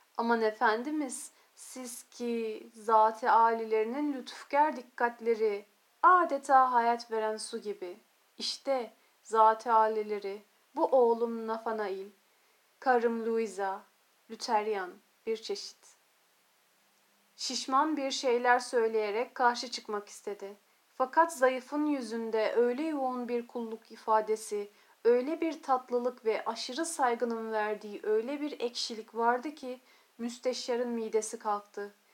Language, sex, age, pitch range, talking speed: Turkish, female, 40-59, 220-260 Hz, 100 wpm